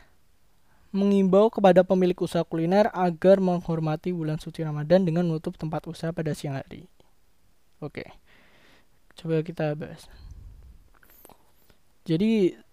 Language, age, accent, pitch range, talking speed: Indonesian, 20-39, native, 155-185 Hz, 105 wpm